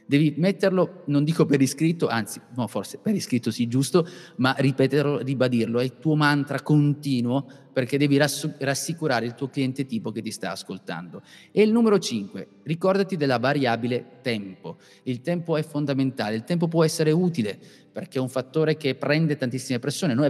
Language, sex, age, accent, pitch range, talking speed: Italian, male, 30-49, native, 125-165 Hz, 175 wpm